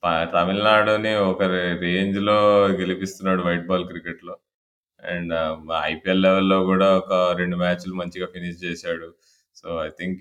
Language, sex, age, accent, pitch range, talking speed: Telugu, male, 20-39, native, 90-105 Hz, 130 wpm